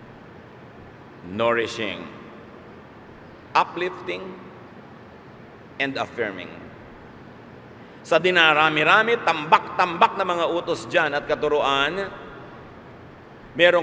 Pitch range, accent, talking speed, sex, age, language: 115-170 Hz, Filipino, 60 wpm, male, 50-69, English